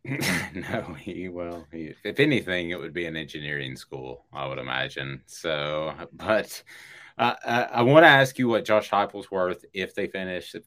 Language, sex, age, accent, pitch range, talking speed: English, male, 30-49, American, 80-110 Hz, 175 wpm